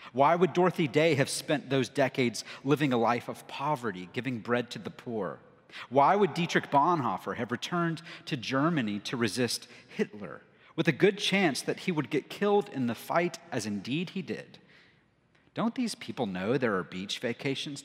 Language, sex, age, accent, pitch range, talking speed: English, male, 40-59, American, 125-180 Hz, 180 wpm